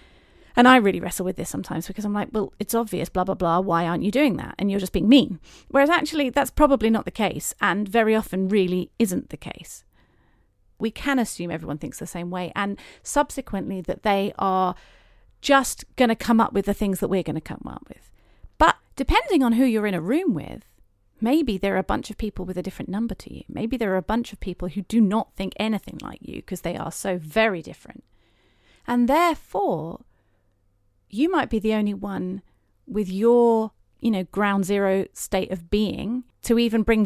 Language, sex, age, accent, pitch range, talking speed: English, female, 40-59, British, 185-240 Hz, 210 wpm